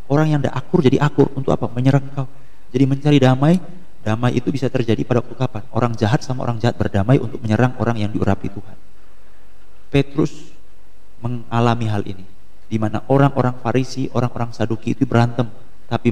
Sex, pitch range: male, 105-130 Hz